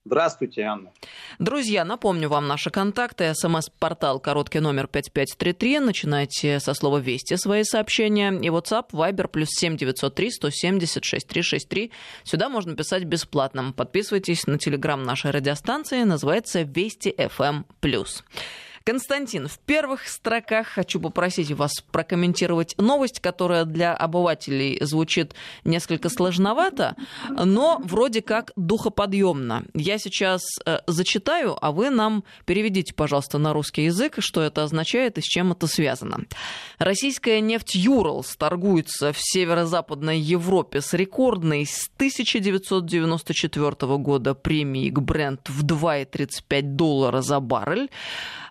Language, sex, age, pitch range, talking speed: Russian, female, 20-39, 150-205 Hz, 130 wpm